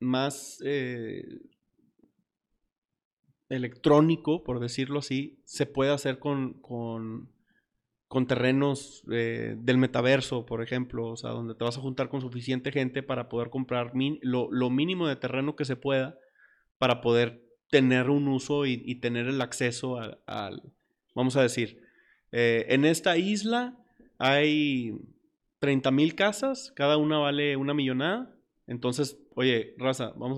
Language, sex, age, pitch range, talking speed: Spanish, male, 30-49, 120-150 Hz, 140 wpm